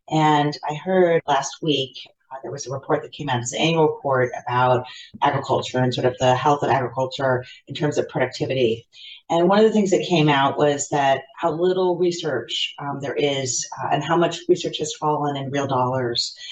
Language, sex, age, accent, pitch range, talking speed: English, female, 40-59, American, 130-165 Hz, 205 wpm